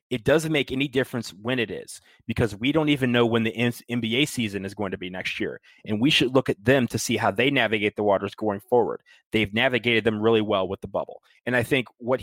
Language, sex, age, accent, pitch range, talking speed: English, male, 30-49, American, 105-135 Hz, 245 wpm